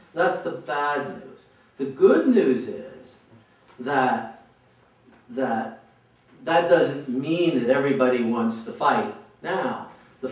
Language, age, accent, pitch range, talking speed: English, 50-69, American, 130-175 Hz, 115 wpm